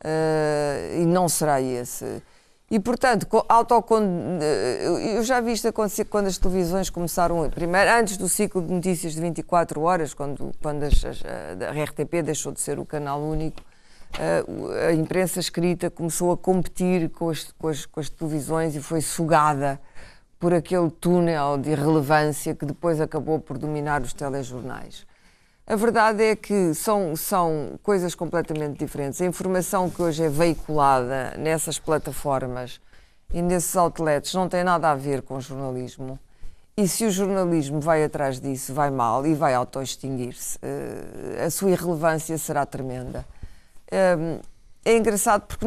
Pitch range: 145-180 Hz